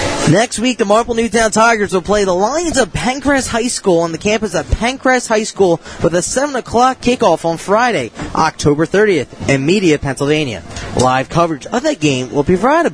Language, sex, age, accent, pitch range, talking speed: English, male, 20-39, American, 130-200 Hz, 190 wpm